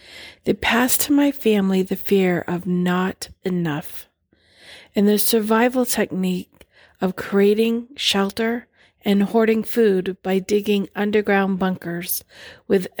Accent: American